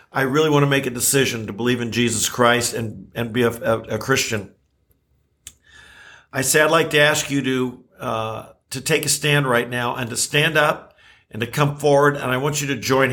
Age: 50-69